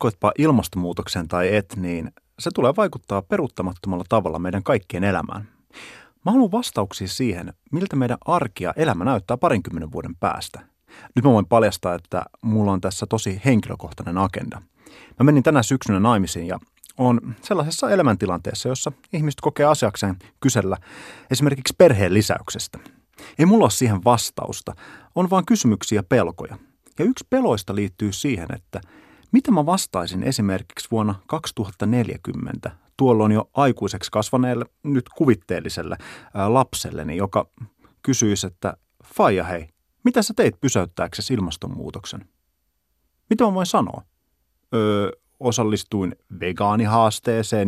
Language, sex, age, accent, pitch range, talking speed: Finnish, male, 30-49, native, 95-130 Hz, 125 wpm